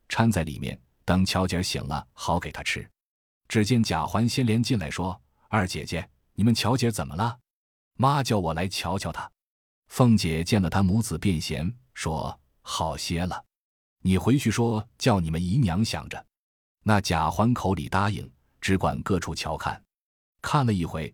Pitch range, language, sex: 85-115 Hz, Chinese, male